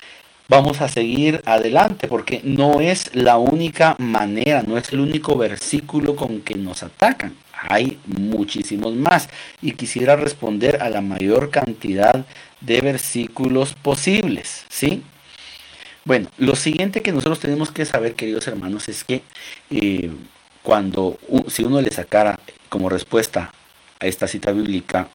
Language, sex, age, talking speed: Italian, male, 50-69, 140 wpm